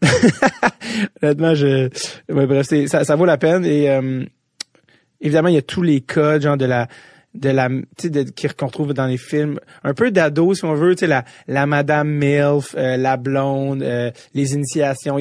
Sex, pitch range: male, 140-170 Hz